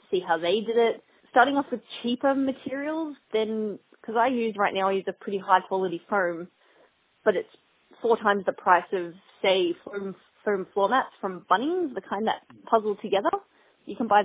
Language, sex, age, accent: English, female, 20-39, Australian